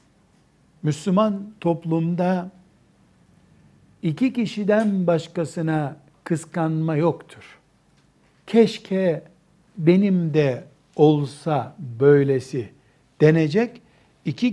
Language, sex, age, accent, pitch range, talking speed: Turkish, male, 60-79, native, 140-180 Hz, 60 wpm